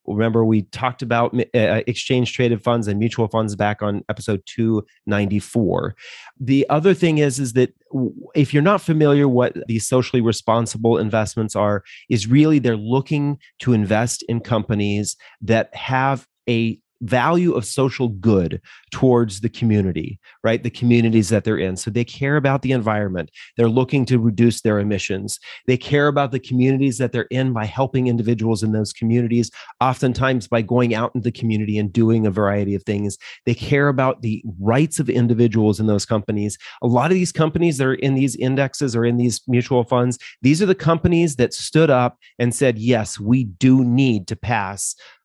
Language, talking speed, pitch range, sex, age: English, 175 wpm, 110-130 Hz, male, 30-49